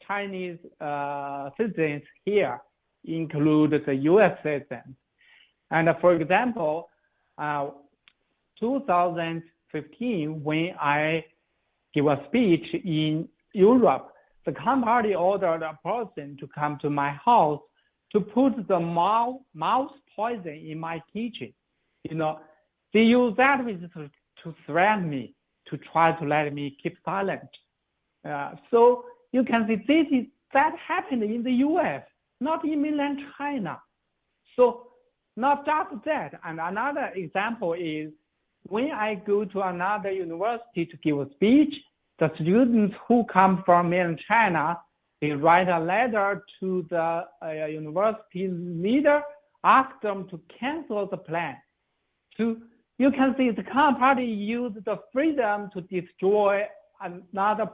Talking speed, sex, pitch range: 130 wpm, male, 160-240 Hz